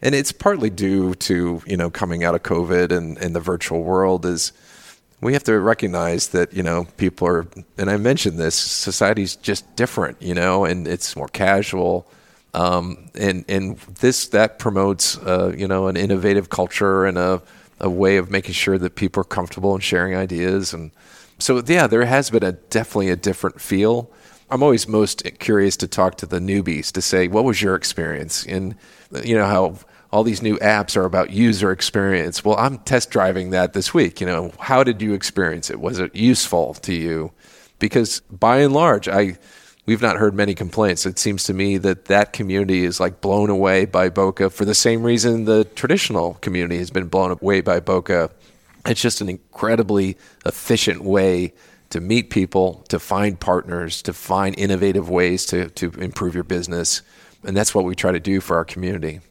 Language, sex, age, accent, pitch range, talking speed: English, male, 40-59, American, 90-105 Hz, 190 wpm